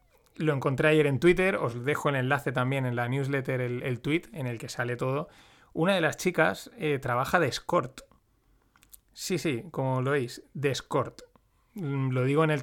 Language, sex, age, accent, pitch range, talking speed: Spanish, male, 30-49, Spanish, 130-155 Hz, 190 wpm